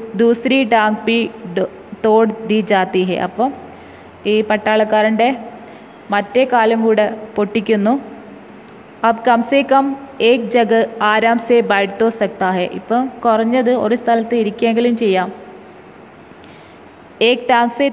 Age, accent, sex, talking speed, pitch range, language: 20-39, native, female, 85 wpm, 210-235 Hz, Hindi